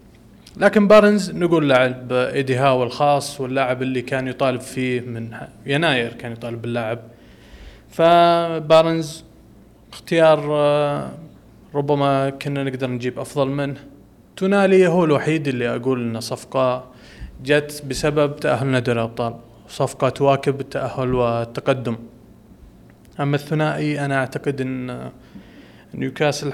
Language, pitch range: Arabic, 125-145 Hz